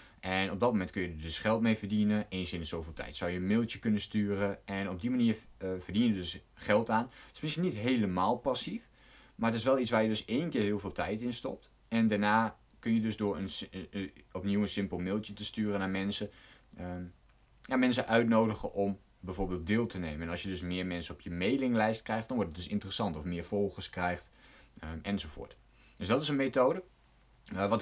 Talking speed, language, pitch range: 235 wpm, Dutch, 90-110 Hz